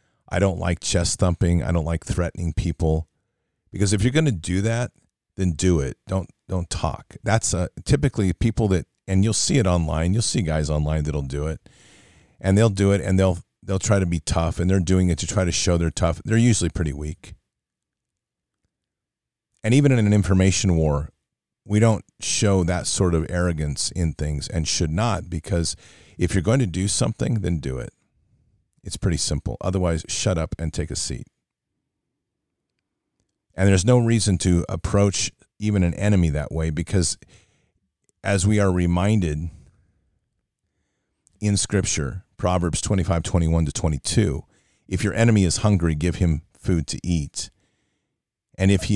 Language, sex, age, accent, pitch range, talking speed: English, male, 40-59, American, 80-100 Hz, 170 wpm